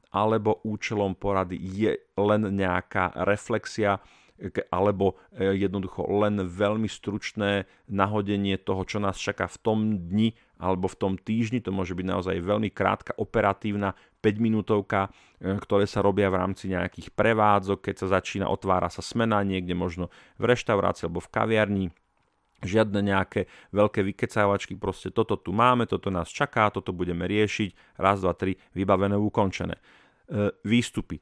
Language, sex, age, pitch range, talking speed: Slovak, male, 40-59, 95-110 Hz, 140 wpm